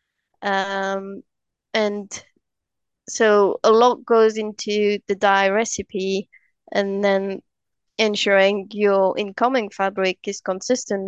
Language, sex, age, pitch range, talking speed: English, female, 20-39, 195-215 Hz, 95 wpm